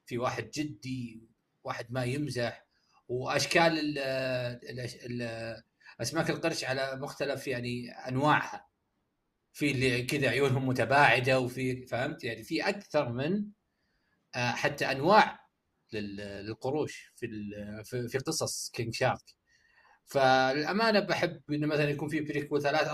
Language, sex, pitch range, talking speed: Arabic, male, 125-165 Hz, 110 wpm